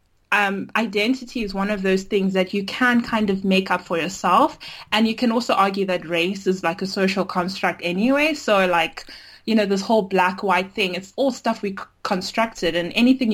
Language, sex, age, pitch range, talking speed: English, female, 20-39, 185-235 Hz, 205 wpm